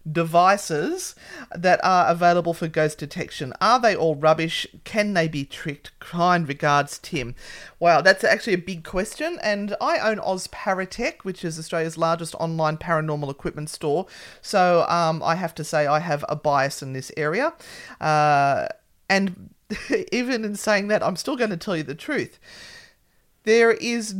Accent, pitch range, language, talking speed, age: Australian, 170-225 Hz, English, 165 wpm, 30-49